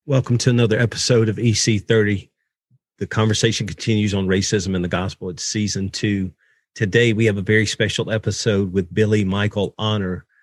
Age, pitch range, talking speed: 40-59, 100-115 Hz, 160 wpm